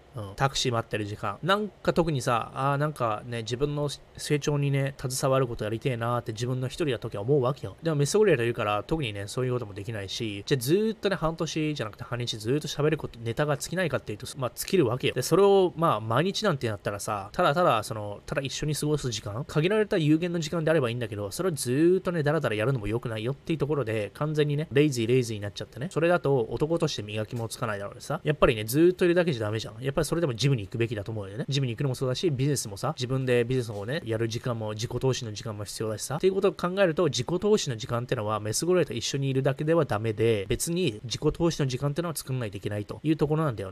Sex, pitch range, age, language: male, 115-155 Hz, 20-39, Japanese